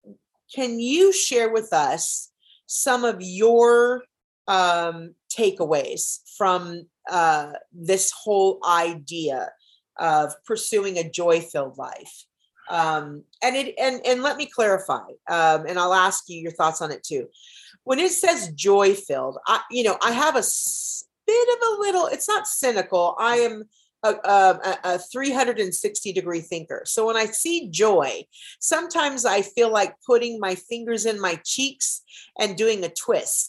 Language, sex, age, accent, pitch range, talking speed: English, female, 40-59, American, 180-260 Hz, 145 wpm